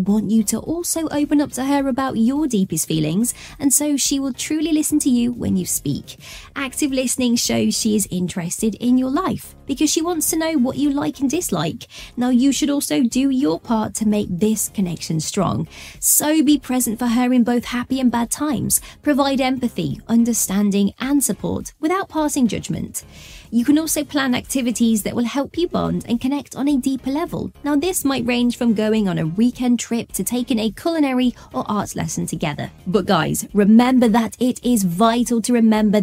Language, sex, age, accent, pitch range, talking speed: English, female, 20-39, British, 220-280 Hz, 195 wpm